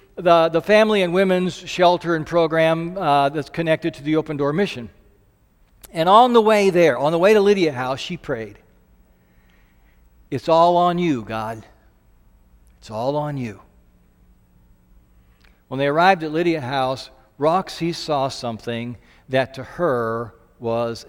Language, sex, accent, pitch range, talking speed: English, male, American, 120-175 Hz, 145 wpm